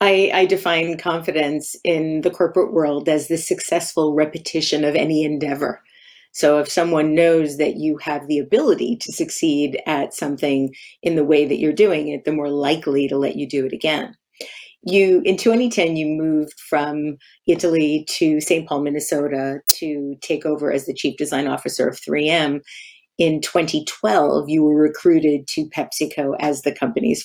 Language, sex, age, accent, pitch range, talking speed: English, female, 40-59, American, 145-170 Hz, 165 wpm